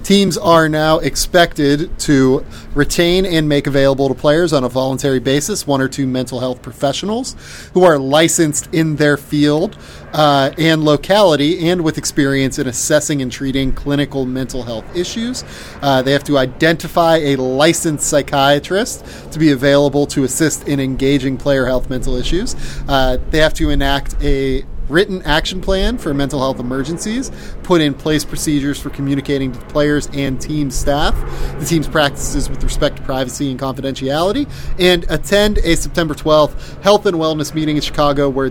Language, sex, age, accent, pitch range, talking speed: English, male, 30-49, American, 135-160 Hz, 165 wpm